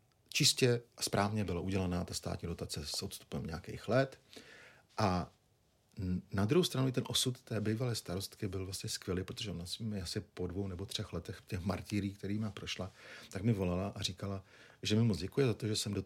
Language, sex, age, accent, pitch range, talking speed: Czech, male, 50-69, native, 90-110 Hz, 195 wpm